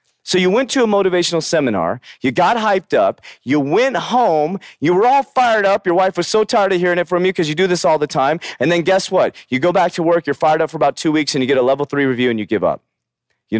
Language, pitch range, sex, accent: English, 140-200 Hz, male, American